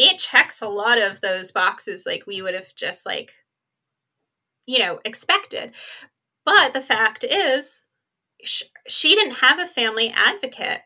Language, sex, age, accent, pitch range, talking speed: English, female, 20-39, American, 205-250 Hz, 150 wpm